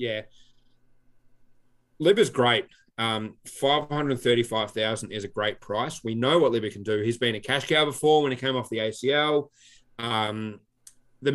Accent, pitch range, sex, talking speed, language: Australian, 110-130 Hz, male, 155 wpm, English